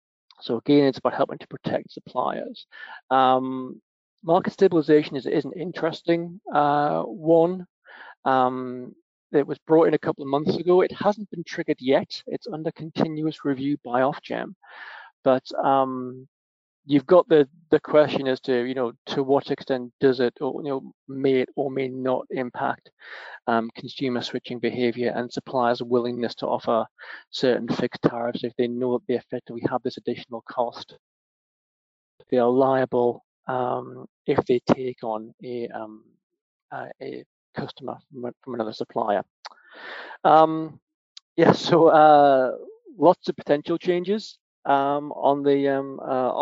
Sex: male